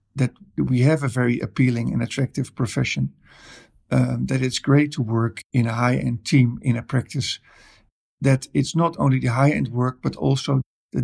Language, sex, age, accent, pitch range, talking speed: English, male, 50-69, Dutch, 125-140 Hz, 175 wpm